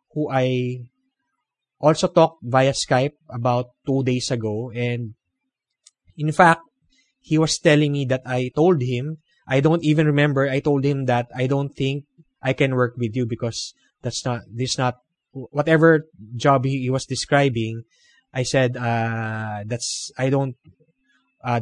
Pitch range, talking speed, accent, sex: 125-155 Hz, 150 wpm, Filipino, male